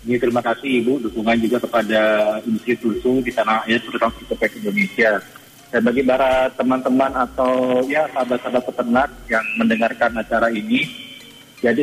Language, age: Indonesian, 30-49